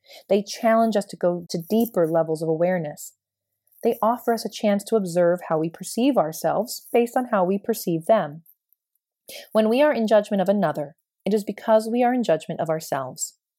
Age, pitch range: 30-49, 165-210 Hz